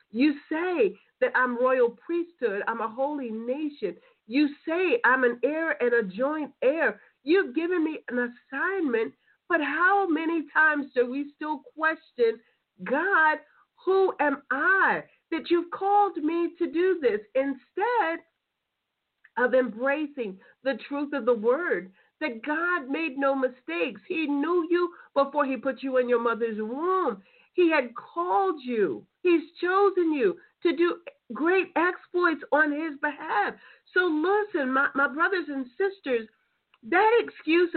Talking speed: 145 wpm